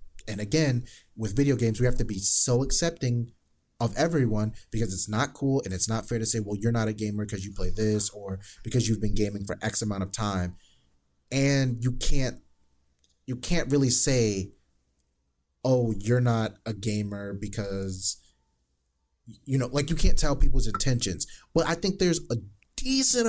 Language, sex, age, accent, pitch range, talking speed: English, male, 30-49, American, 100-125 Hz, 180 wpm